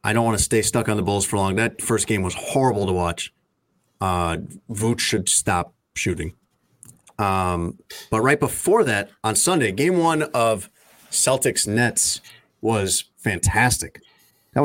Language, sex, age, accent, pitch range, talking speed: English, male, 30-49, American, 100-125 Hz, 150 wpm